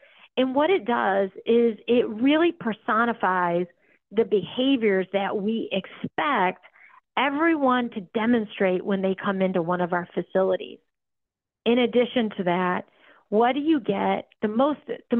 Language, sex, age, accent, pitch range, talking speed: English, female, 40-59, American, 195-240 Hz, 140 wpm